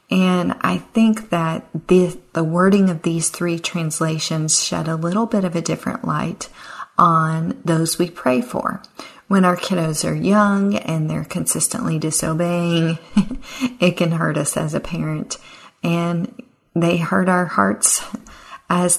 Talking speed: 145 wpm